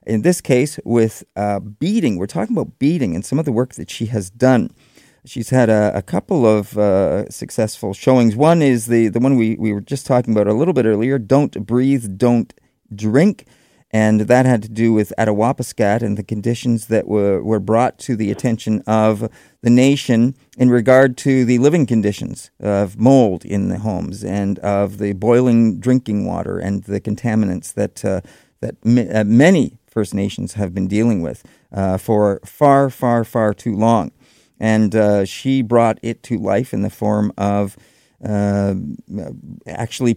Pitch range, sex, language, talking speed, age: 105-125 Hz, male, English, 180 wpm, 50-69